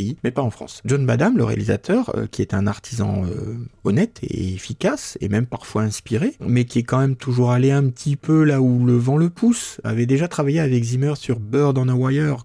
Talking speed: 220 wpm